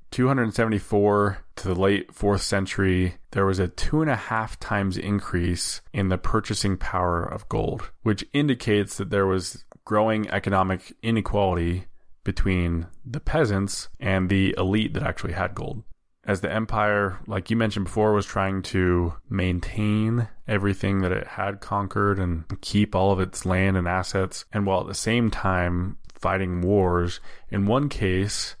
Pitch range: 95-105 Hz